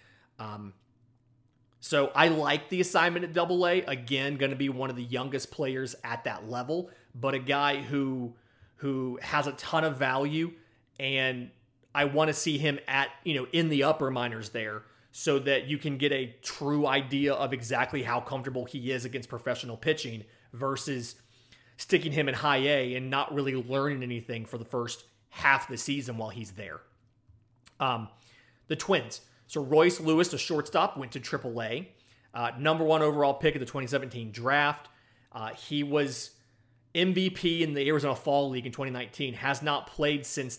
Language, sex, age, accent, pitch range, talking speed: English, male, 30-49, American, 120-150 Hz, 175 wpm